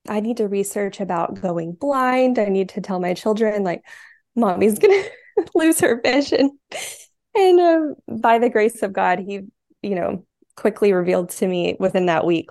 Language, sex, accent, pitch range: English, female, American, 180-210 Hz